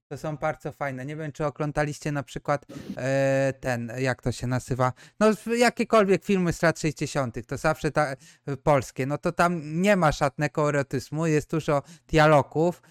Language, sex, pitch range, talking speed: Polish, male, 135-180 Hz, 170 wpm